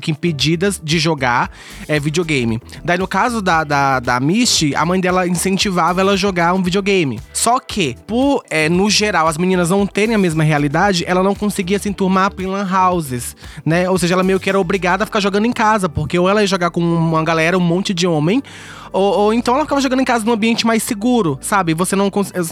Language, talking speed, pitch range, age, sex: Portuguese, 215 wpm, 155-205 Hz, 20-39, male